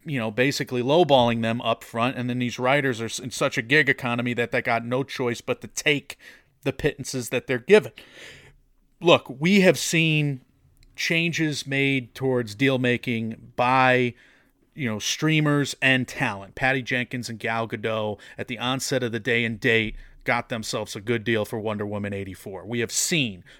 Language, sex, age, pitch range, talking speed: English, male, 30-49, 115-145 Hz, 180 wpm